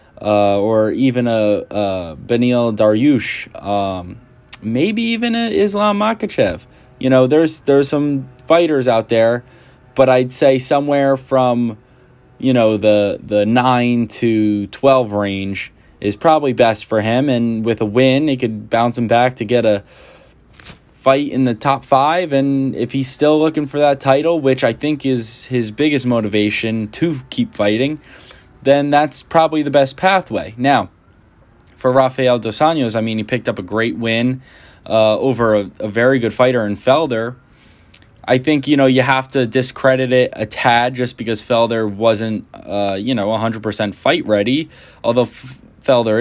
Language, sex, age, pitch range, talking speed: English, male, 10-29, 110-135 Hz, 165 wpm